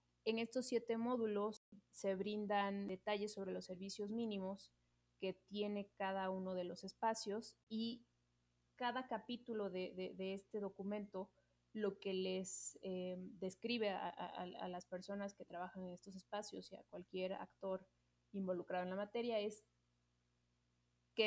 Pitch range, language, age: 180-205 Hz, Spanish, 30-49